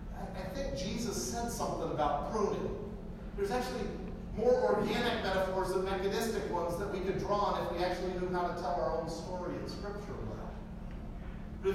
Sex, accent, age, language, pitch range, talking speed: male, American, 50-69, English, 180-210 Hz, 175 wpm